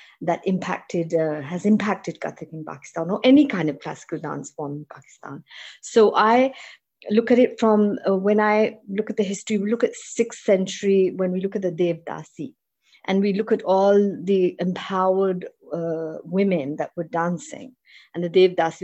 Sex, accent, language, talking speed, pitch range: female, Indian, English, 185 wpm, 160-195 Hz